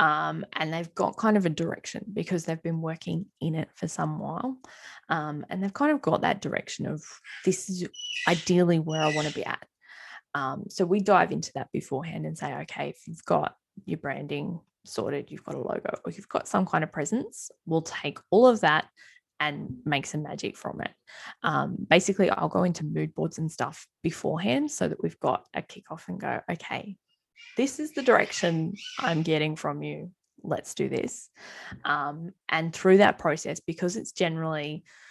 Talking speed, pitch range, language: 190 wpm, 155-195 Hz, English